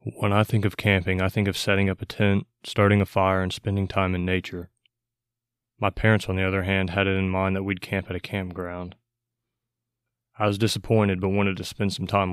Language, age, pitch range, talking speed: English, 20-39, 95-115 Hz, 220 wpm